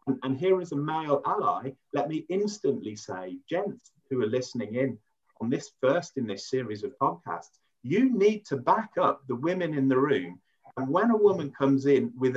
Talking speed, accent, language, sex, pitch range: 195 wpm, British, English, male, 120-165 Hz